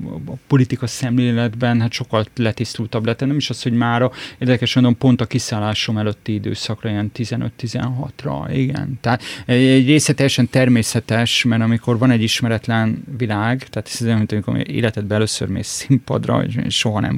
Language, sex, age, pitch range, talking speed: Hungarian, male, 30-49, 120-140 Hz, 150 wpm